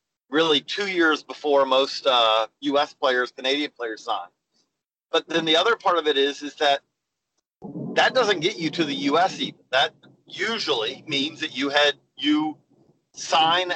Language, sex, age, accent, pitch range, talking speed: English, male, 40-59, American, 135-160 Hz, 160 wpm